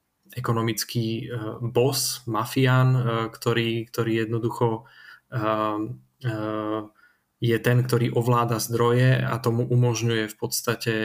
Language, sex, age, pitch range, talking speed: Czech, male, 20-39, 110-125 Hz, 85 wpm